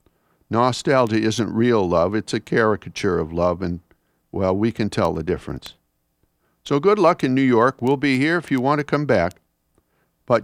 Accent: American